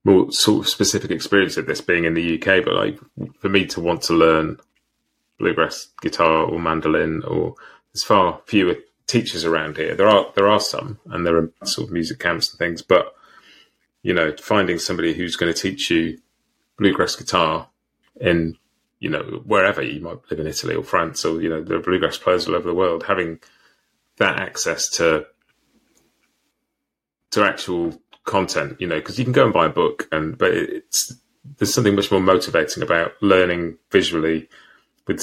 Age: 30-49